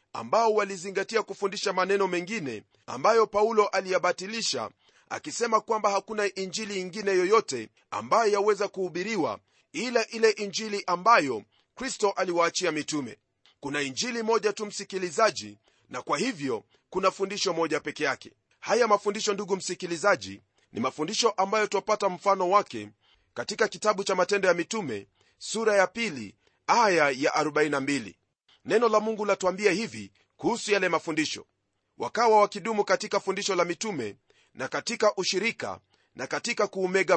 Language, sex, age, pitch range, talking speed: Swahili, male, 40-59, 180-215 Hz, 130 wpm